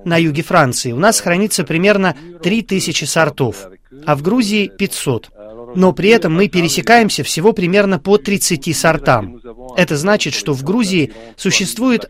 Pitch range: 150-200 Hz